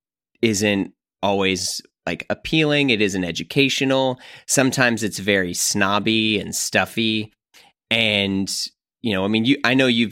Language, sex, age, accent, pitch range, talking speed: English, male, 30-49, American, 100-115 Hz, 130 wpm